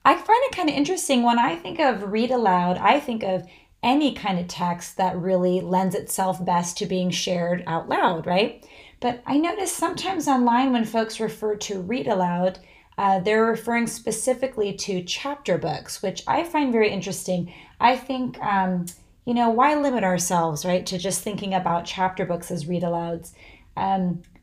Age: 30-49